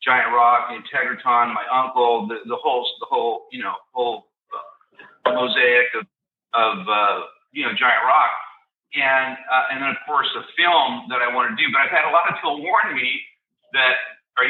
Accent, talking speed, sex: American, 190 wpm, male